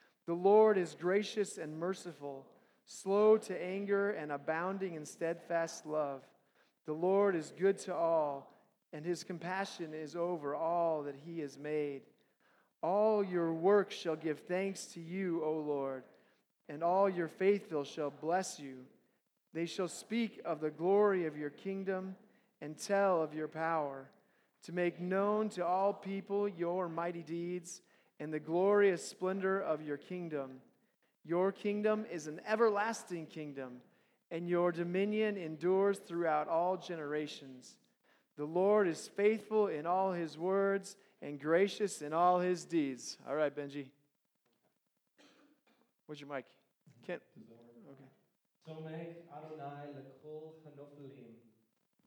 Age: 40-59